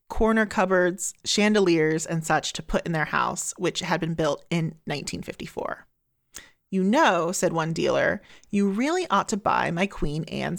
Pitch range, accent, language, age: 170-210 Hz, American, English, 30-49